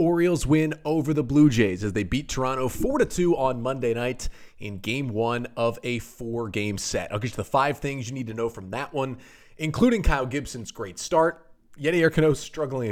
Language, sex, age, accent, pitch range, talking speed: English, male, 30-49, American, 120-175 Hz, 205 wpm